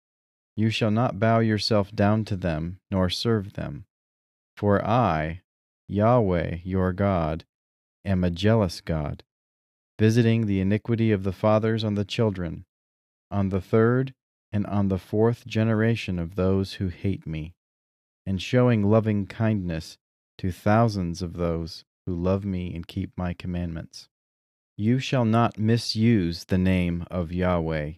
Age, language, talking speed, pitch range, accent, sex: 40-59, English, 140 wpm, 85-110 Hz, American, male